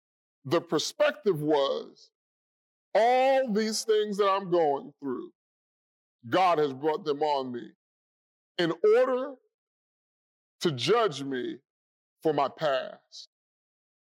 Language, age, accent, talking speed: English, 30-49, American, 100 wpm